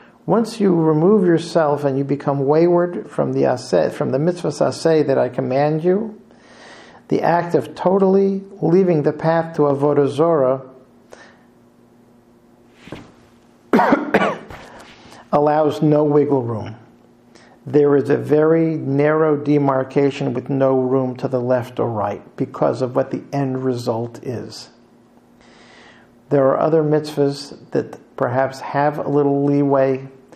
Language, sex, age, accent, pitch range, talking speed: English, male, 50-69, American, 130-160 Hz, 125 wpm